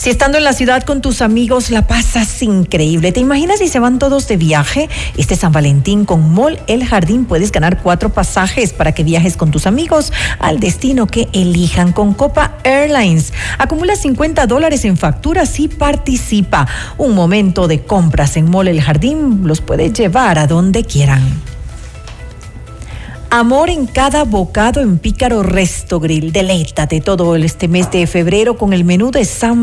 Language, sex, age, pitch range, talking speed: Spanish, female, 40-59, 160-250 Hz, 170 wpm